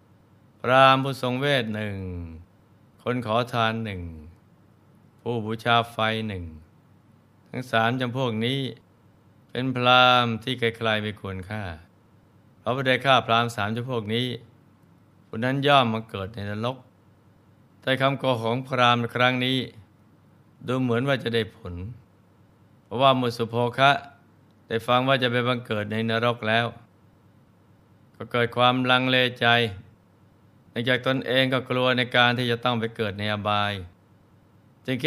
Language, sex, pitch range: Thai, male, 105-125 Hz